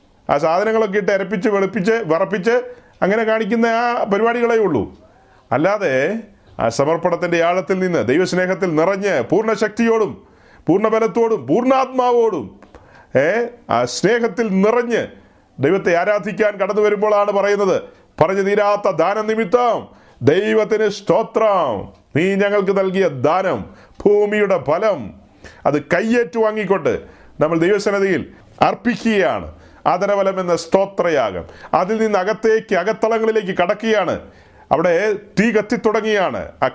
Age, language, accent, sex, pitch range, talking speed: 40-59, Malayalam, native, male, 185-220 Hz, 90 wpm